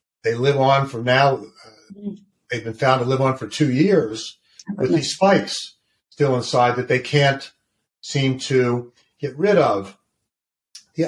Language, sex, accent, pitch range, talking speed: English, male, American, 125-150 Hz, 155 wpm